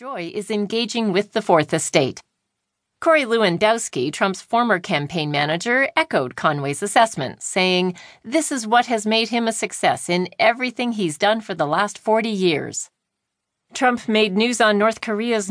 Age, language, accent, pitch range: 40-59, English, American, 195-255 Hz